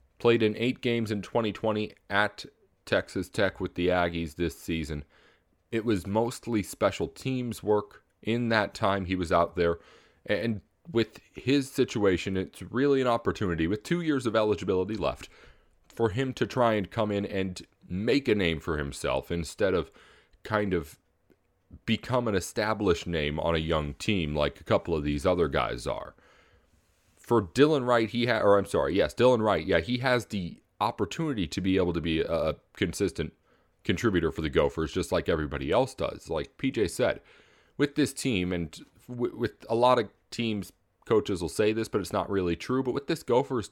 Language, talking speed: English, 180 wpm